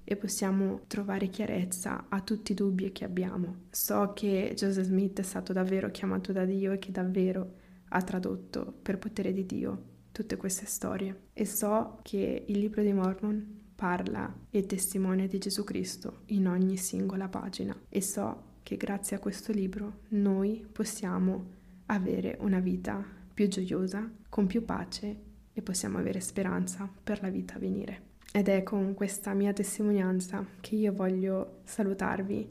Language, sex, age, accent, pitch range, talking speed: Italian, female, 20-39, native, 190-210 Hz, 155 wpm